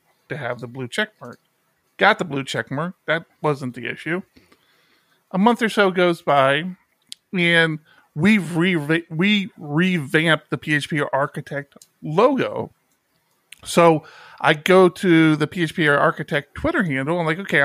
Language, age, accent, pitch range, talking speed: English, 40-59, American, 150-200 Hz, 145 wpm